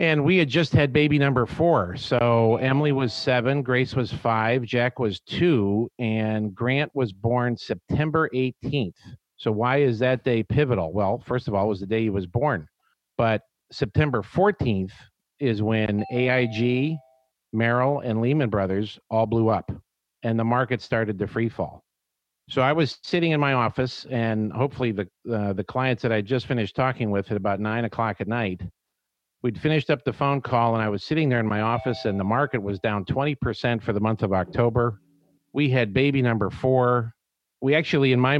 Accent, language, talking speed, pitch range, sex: American, English, 185 wpm, 110-135 Hz, male